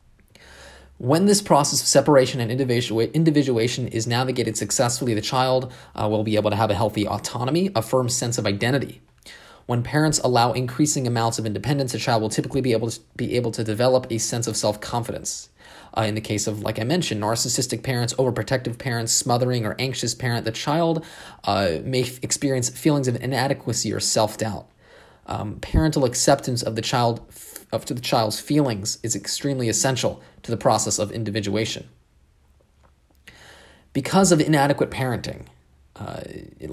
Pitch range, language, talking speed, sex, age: 110-135 Hz, English, 160 wpm, male, 20-39